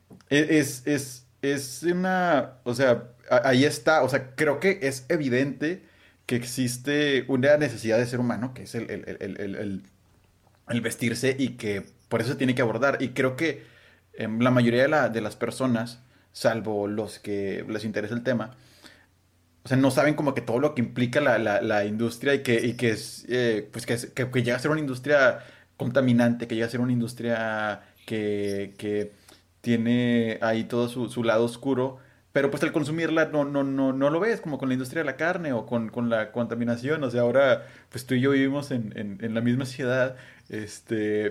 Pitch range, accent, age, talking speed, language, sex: 115-145 Hz, Mexican, 30-49, 200 wpm, Spanish, male